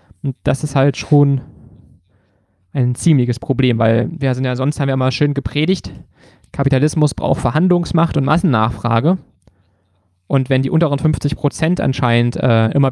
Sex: male